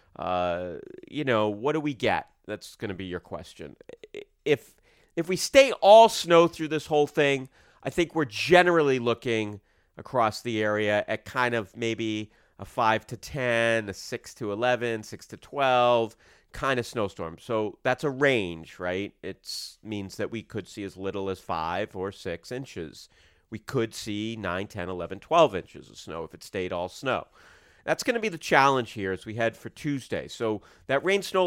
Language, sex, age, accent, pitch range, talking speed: English, male, 40-59, American, 105-155 Hz, 185 wpm